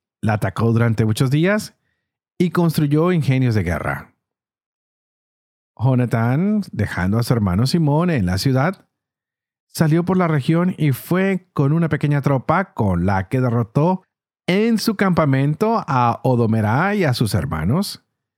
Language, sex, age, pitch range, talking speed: Spanish, male, 40-59, 120-165 Hz, 135 wpm